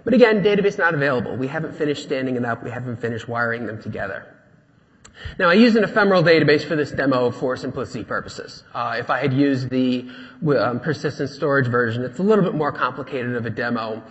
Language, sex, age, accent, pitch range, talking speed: English, male, 30-49, American, 120-155 Hz, 205 wpm